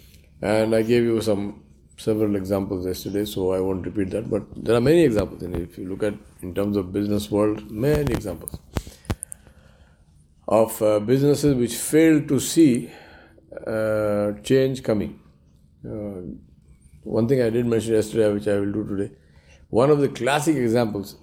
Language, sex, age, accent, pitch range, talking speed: English, male, 50-69, Indian, 90-125 Hz, 160 wpm